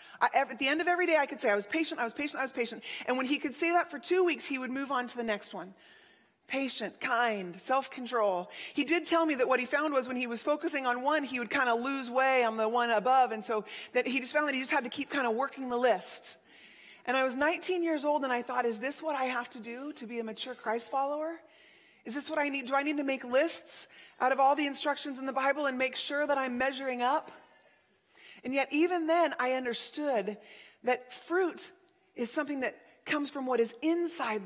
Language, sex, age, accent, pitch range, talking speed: English, female, 30-49, American, 250-325 Hz, 250 wpm